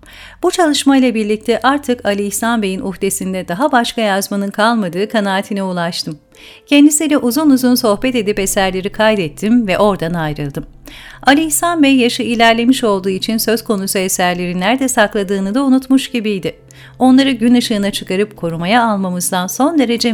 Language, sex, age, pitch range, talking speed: Turkish, female, 40-59, 185-250 Hz, 145 wpm